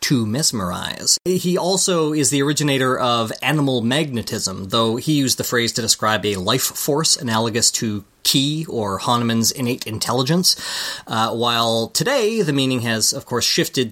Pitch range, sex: 115-155 Hz, male